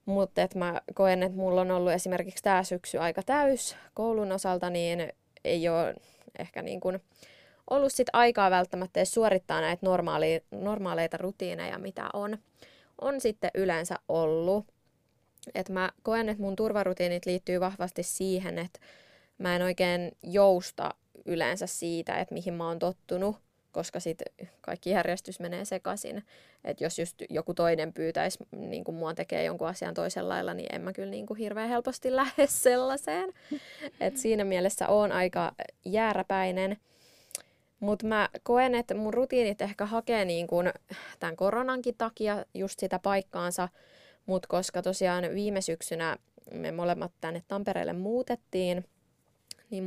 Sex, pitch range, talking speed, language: female, 175-215 Hz, 140 wpm, Finnish